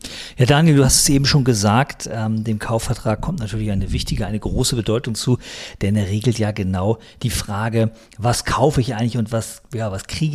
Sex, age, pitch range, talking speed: male, 50-69, 105-125 Hz, 205 wpm